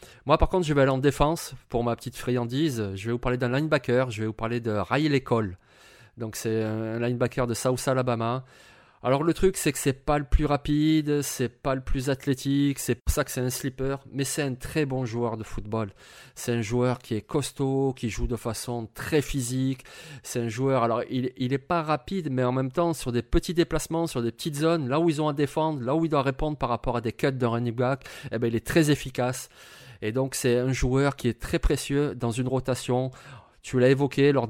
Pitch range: 120-140 Hz